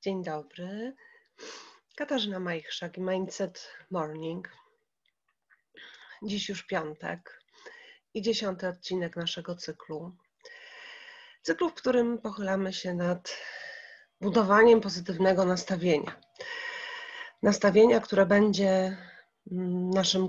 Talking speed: 85 wpm